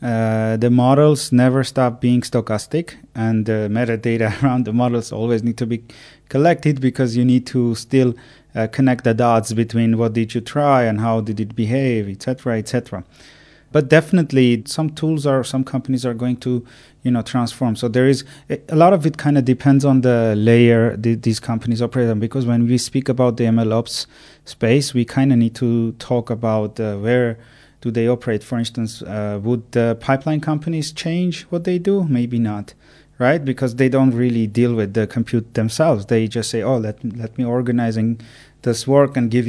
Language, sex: English, male